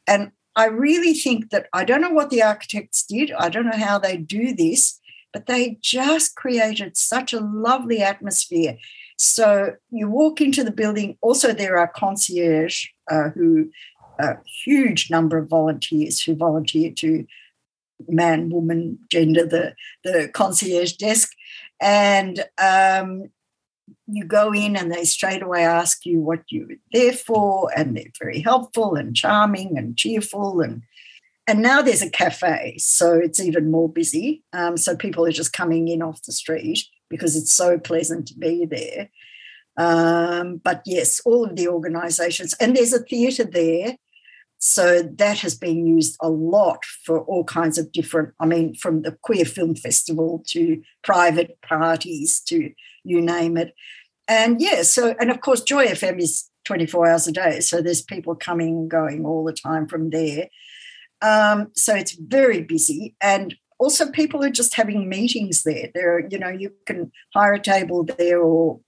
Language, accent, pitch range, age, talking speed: English, Australian, 165-225 Hz, 60-79, 165 wpm